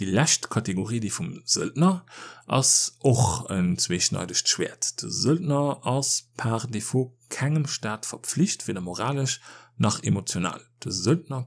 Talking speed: 120 wpm